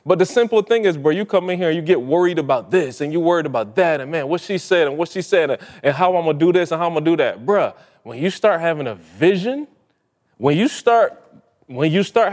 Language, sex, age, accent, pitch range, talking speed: English, male, 20-39, American, 145-195 Hz, 280 wpm